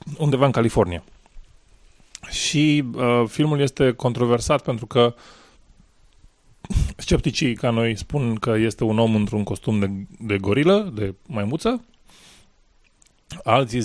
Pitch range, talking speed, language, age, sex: 105-130 Hz, 115 wpm, Romanian, 20-39, male